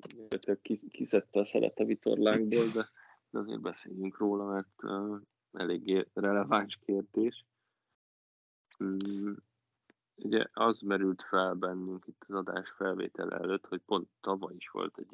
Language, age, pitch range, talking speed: Hungarian, 20-39, 90-100 Hz, 130 wpm